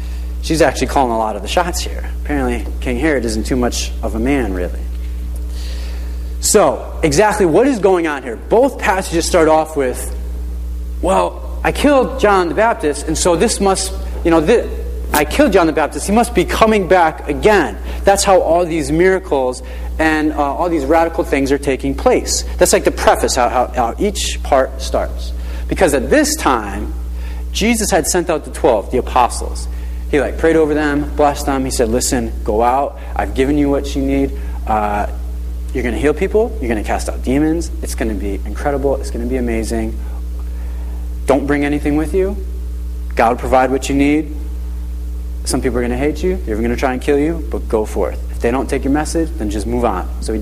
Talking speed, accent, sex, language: 200 wpm, American, male, English